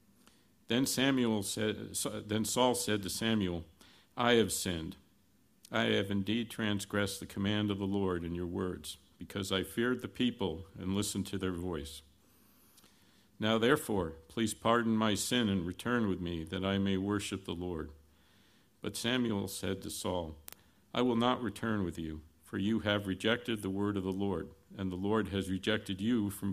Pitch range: 90-110 Hz